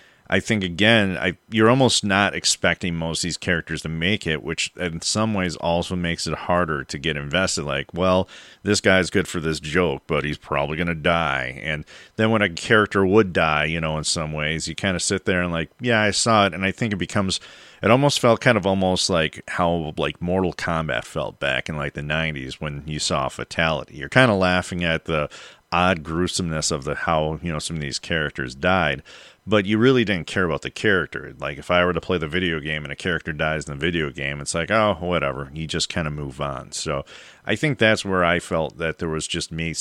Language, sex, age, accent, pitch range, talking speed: English, male, 40-59, American, 75-95 Hz, 230 wpm